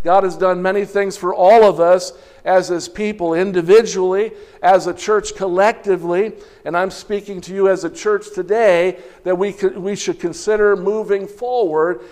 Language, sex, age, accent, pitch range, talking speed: English, male, 50-69, American, 160-195 Hz, 170 wpm